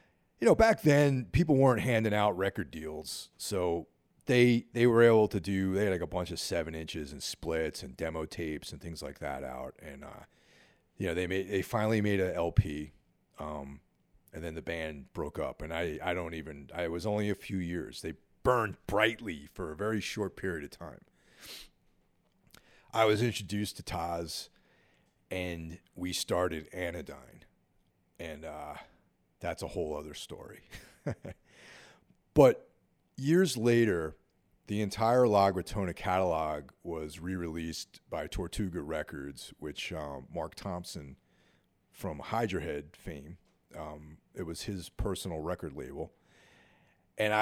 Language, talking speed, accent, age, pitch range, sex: English, 150 wpm, American, 40-59, 80-105 Hz, male